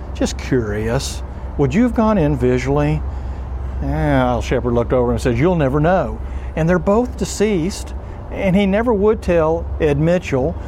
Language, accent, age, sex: English, American, 50-69, male